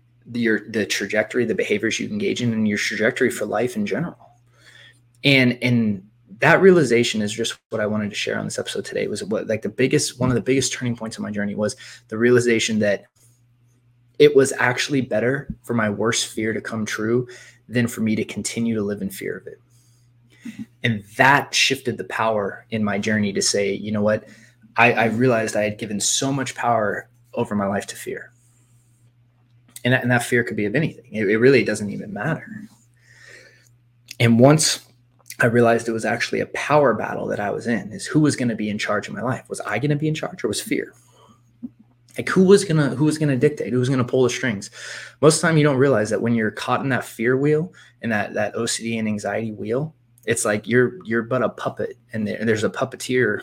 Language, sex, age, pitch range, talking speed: English, male, 20-39, 110-125 Hz, 220 wpm